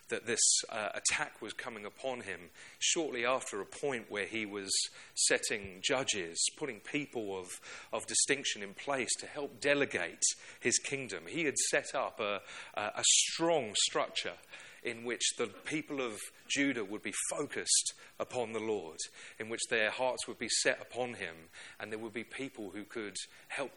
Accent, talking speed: British, 170 wpm